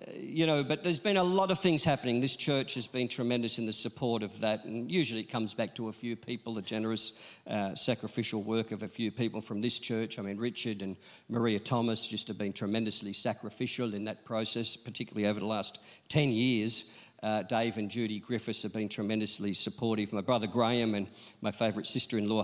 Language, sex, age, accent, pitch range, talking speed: English, male, 50-69, Australian, 105-125 Hz, 205 wpm